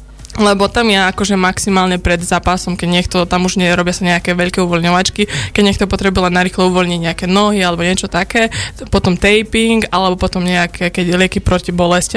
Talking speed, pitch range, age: 180 wpm, 180-200 Hz, 20-39